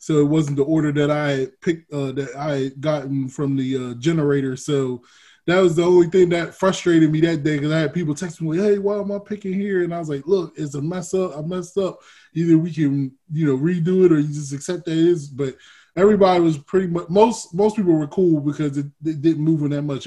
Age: 20-39